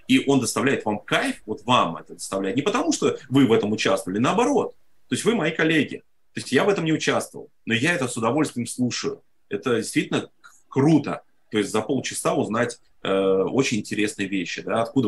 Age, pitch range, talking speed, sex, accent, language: 30-49, 100-135 Hz, 190 wpm, male, native, Russian